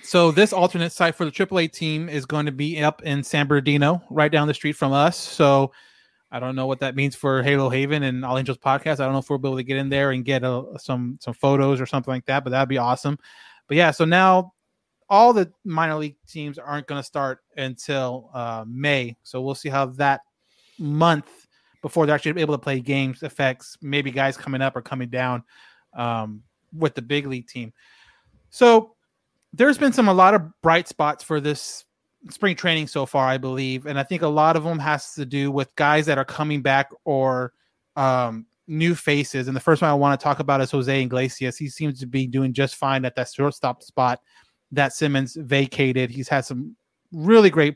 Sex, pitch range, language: male, 135-160 Hz, English